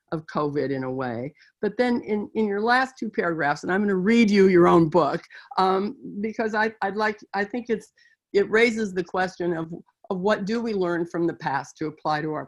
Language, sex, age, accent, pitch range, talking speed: English, female, 60-79, American, 165-220 Hz, 225 wpm